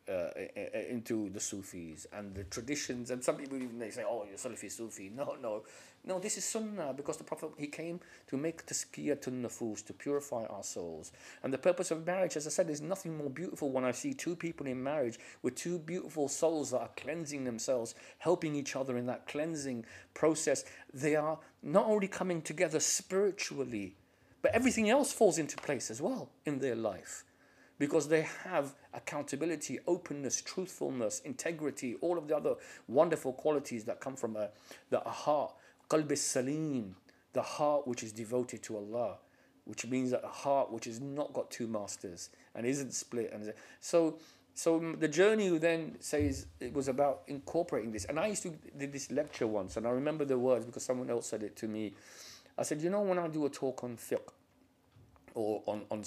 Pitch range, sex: 120-165 Hz, male